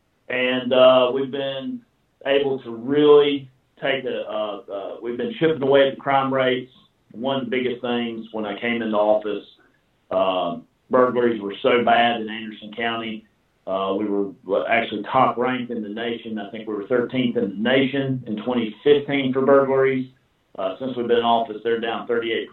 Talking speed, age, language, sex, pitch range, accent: 180 wpm, 40-59, English, male, 110-135 Hz, American